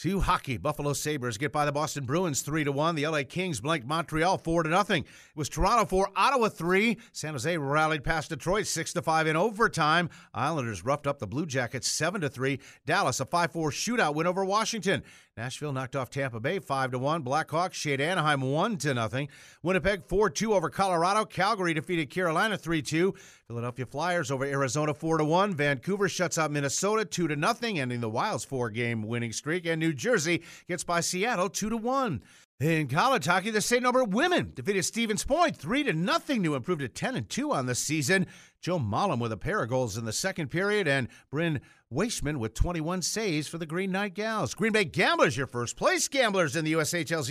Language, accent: English, American